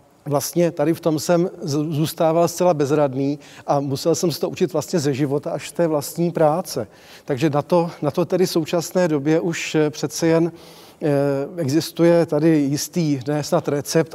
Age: 40-59